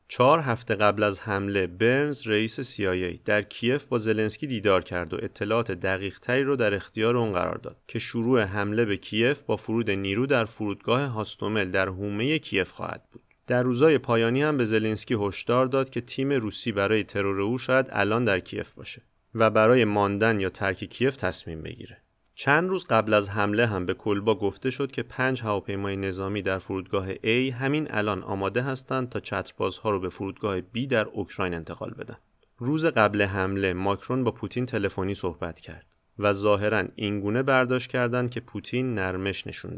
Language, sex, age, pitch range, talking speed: Persian, male, 30-49, 95-120 Hz, 175 wpm